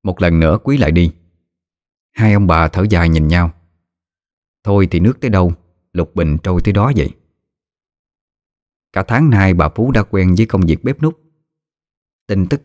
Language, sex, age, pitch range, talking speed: Vietnamese, male, 20-39, 85-110 Hz, 180 wpm